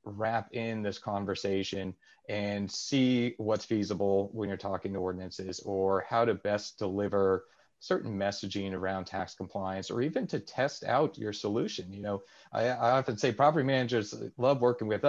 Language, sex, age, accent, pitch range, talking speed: English, male, 30-49, American, 100-120 Hz, 165 wpm